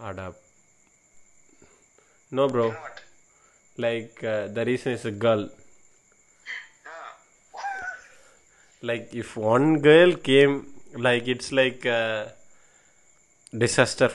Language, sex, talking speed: English, male, 80 wpm